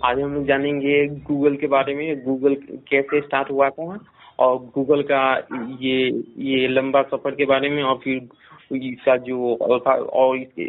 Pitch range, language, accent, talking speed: 130-145 Hz, Hindi, native, 155 wpm